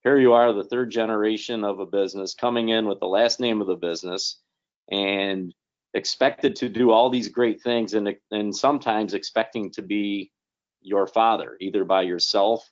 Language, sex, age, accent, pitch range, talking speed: English, male, 40-59, American, 95-115 Hz, 175 wpm